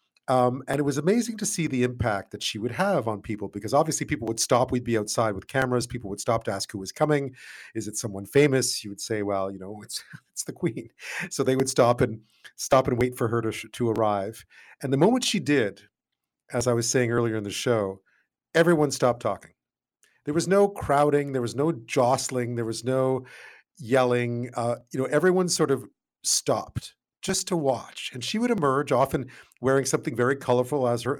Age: 40-59